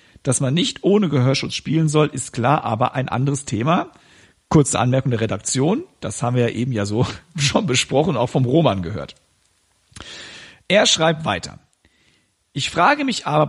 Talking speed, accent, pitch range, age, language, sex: 165 wpm, German, 120-165 Hz, 50-69, German, male